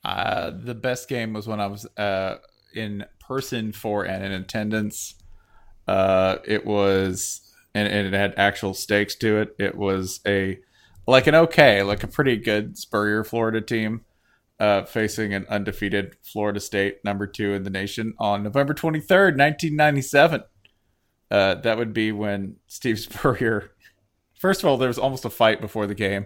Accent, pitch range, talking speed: American, 100-120 Hz, 165 wpm